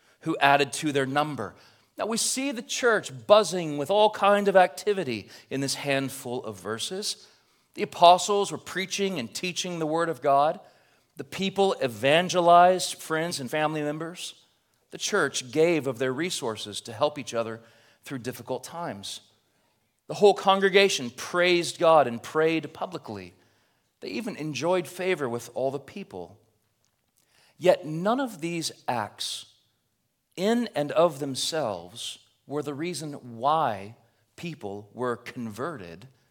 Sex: male